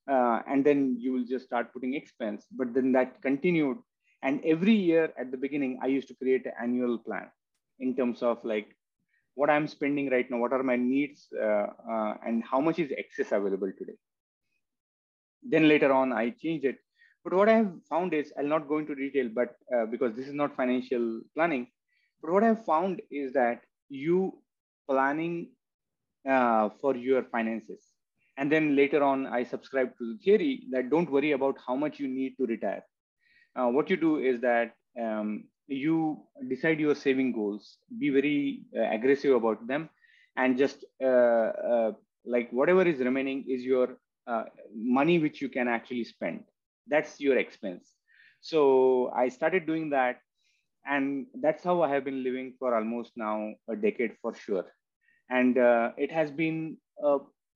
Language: English